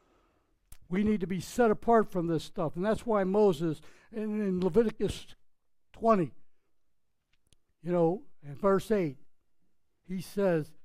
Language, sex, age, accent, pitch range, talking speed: English, male, 60-79, American, 170-215 Hz, 125 wpm